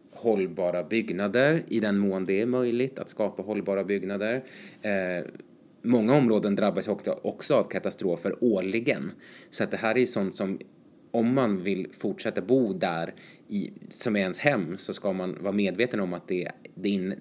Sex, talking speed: male, 175 wpm